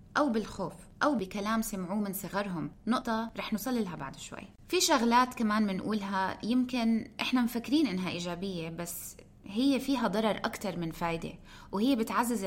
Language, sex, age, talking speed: Arabic, female, 20-39, 150 wpm